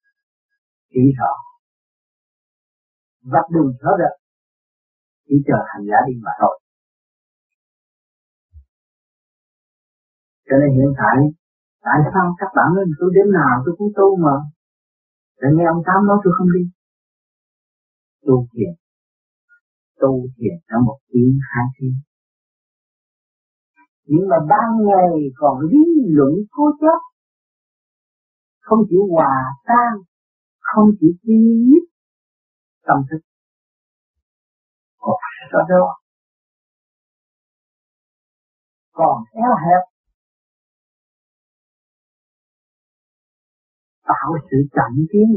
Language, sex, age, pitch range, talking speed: Vietnamese, male, 50-69, 130-205 Hz, 100 wpm